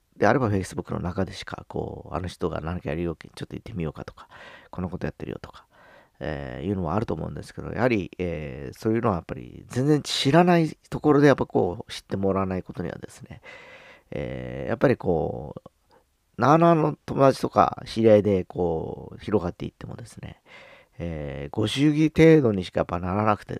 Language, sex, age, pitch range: Japanese, male, 40-59, 90-120 Hz